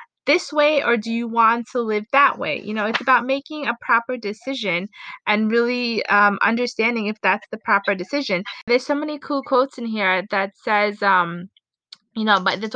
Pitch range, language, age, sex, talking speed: 210-255 Hz, English, 20-39, female, 195 wpm